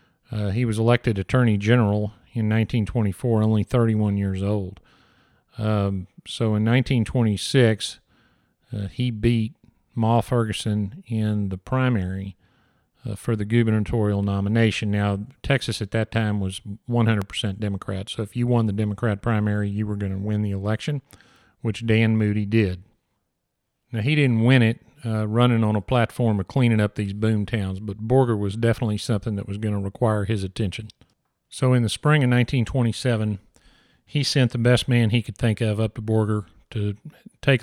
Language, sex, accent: English, male, American